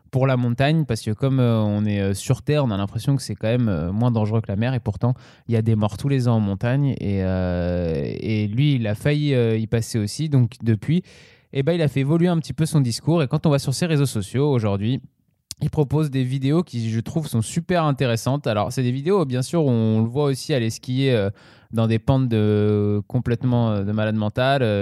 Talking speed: 235 wpm